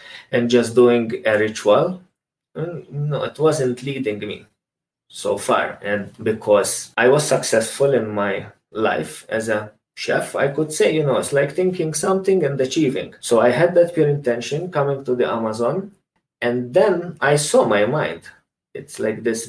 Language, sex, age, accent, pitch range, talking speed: English, male, 20-39, Croatian, 120-170 Hz, 165 wpm